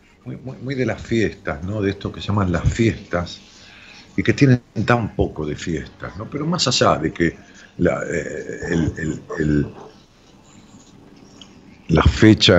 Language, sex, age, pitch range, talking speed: Spanish, male, 50-69, 80-105 Hz, 160 wpm